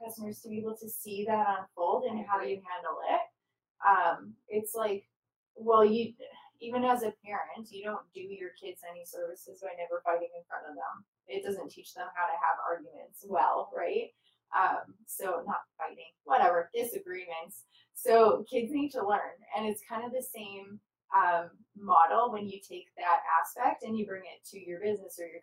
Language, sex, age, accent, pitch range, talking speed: English, female, 20-39, American, 175-230 Hz, 185 wpm